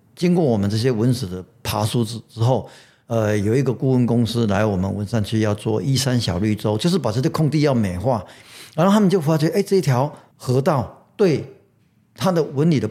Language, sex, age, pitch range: Chinese, male, 50-69, 115-165 Hz